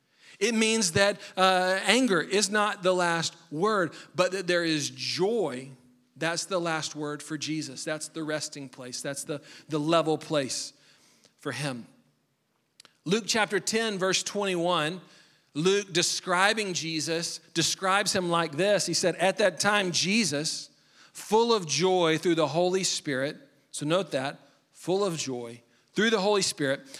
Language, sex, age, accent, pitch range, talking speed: English, male, 40-59, American, 160-210 Hz, 150 wpm